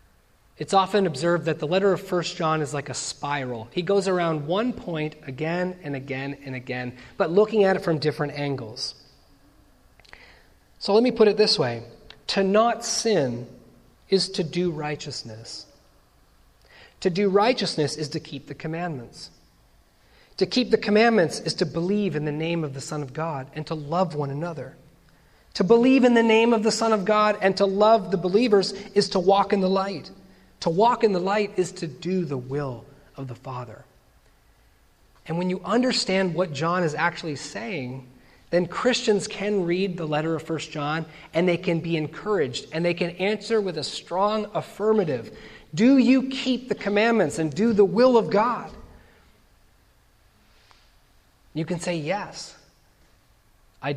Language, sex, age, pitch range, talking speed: English, male, 30-49, 145-200 Hz, 170 wpm